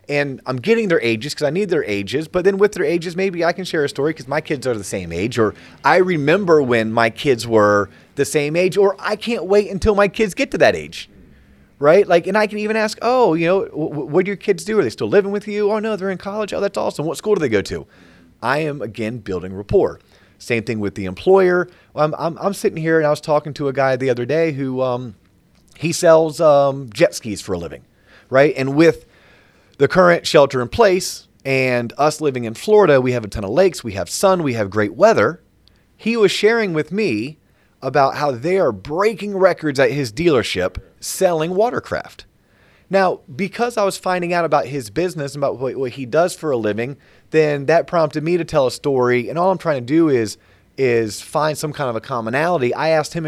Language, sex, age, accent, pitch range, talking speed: English, male, 30-49, American, 125-185 Hz, 230 wpm